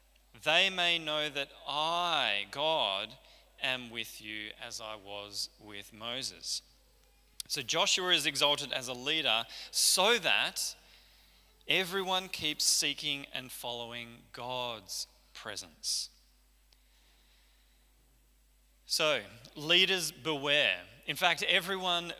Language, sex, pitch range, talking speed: English, male, 105-150 Hz, 95 wpm